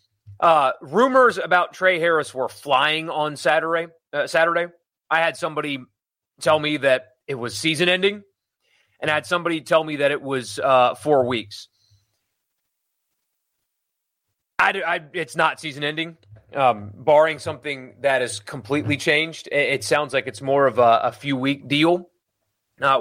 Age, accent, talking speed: 30-49, American, 155 wpm